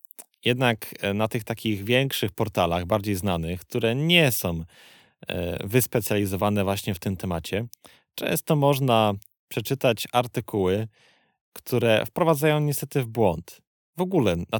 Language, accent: Polish, native